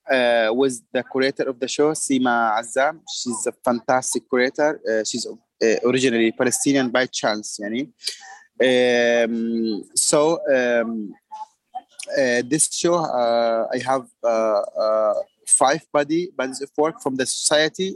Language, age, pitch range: English, 20-39, 120-155 Hz